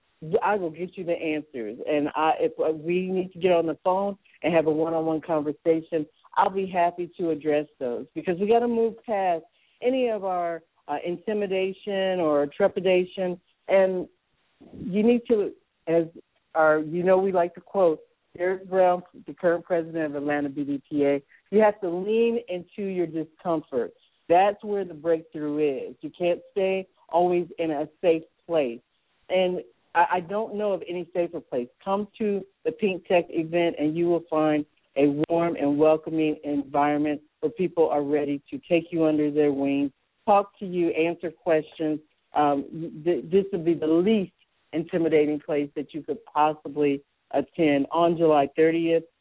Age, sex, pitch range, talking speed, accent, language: 50-69, female, 150-185 Hz, 165 wpm, American, English